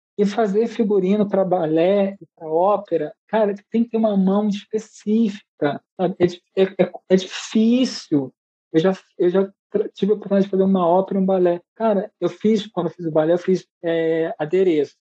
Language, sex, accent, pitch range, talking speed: Portuguese, male, Brazilian, 170-210 Hz, 185 wpm